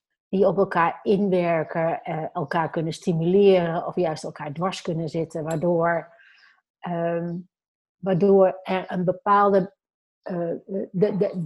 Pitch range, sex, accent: 165-195 Hz, female, Dutch